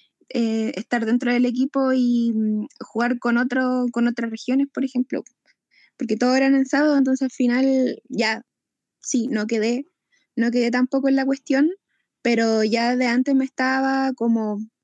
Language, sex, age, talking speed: Spanish, female, 10-29, 160 wpm